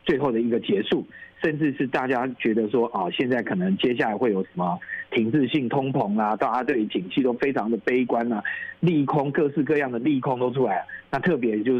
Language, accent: Chinese, native